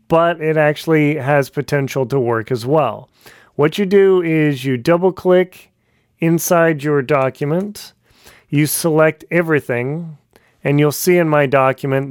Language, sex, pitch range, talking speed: English, male, 140-175 Hz, 135 wpm